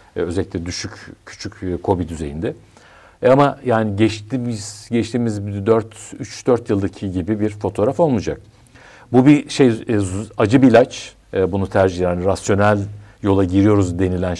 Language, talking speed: Turkish, 135 wpm